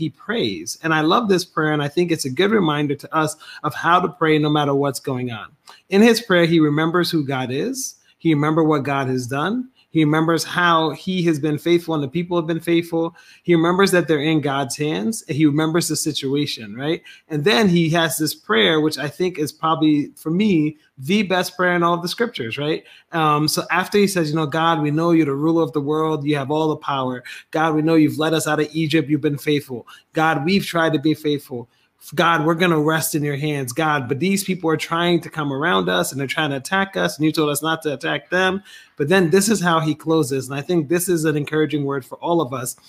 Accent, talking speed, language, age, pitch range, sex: American, 250 wpm, English, 30-49, 150-170 Hz, male